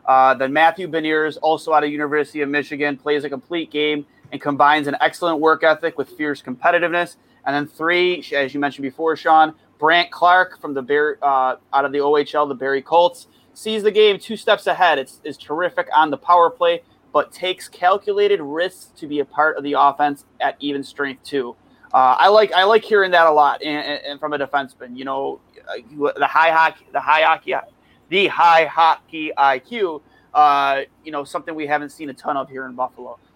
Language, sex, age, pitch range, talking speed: English, male, 30-49, 140-165 Hz, 200 wpm